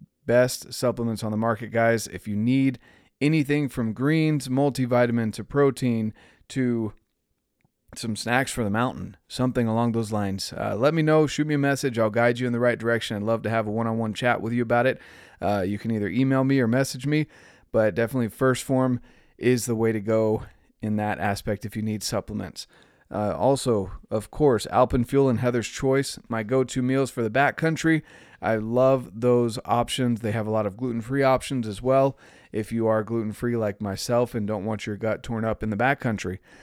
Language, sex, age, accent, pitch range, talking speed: English, male, 30-49, American, 110-130 Hz, 200 wpm